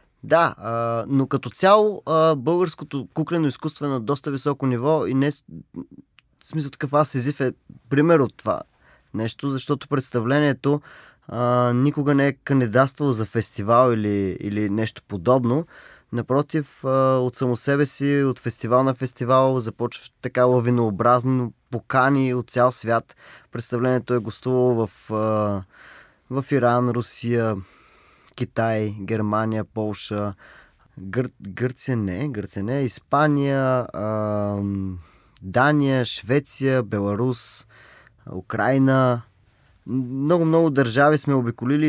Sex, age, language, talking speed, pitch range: male, 20-39, Bulgarian, 110 wpm, 115-135 Hz